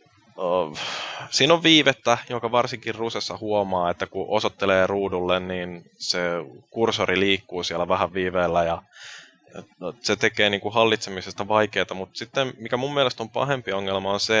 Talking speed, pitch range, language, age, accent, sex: 140 wpm, 95-110 Hz, Finnish, 20-39, native, male